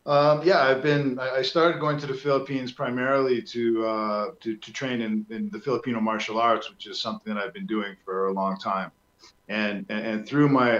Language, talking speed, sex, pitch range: English, 205 wpm, male, 100-120 Hz